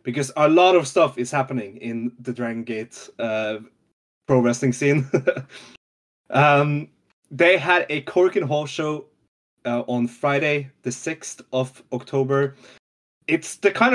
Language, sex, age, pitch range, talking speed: English, male, 20-39, 125-145 Hz, 140 wpm